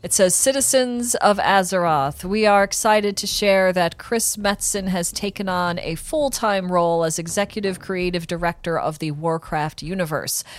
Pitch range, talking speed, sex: 165-210 Hz, 155 wpm, female